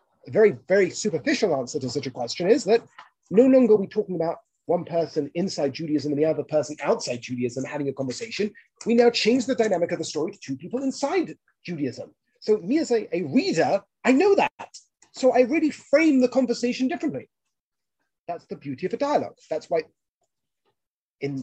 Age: 30-49